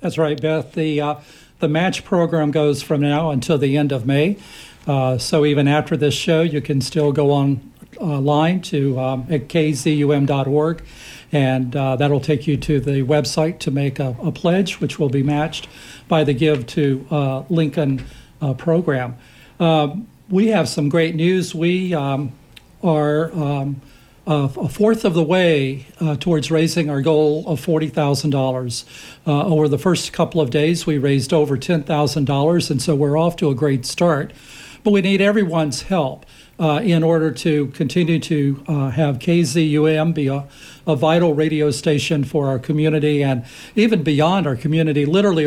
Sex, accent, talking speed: male, American, 170 wpm